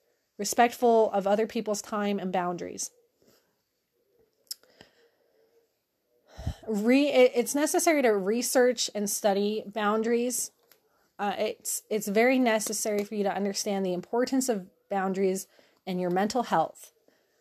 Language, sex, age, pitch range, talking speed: English, female, 30-49, 200-250 Hz, 110 wpm